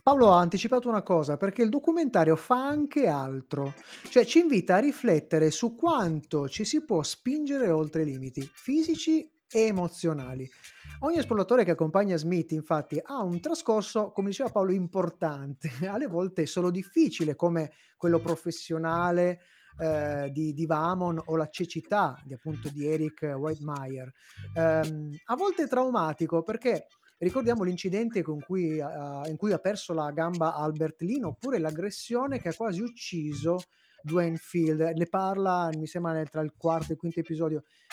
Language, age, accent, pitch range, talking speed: Italian, 30-49, native, 155-230 Hz, 155 wpm